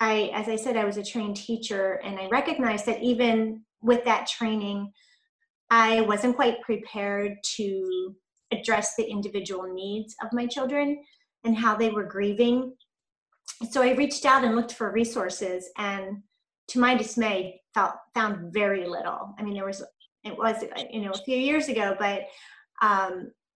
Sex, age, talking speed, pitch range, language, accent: female, 30-49, 160 wpm, 200-245 Hz, English, American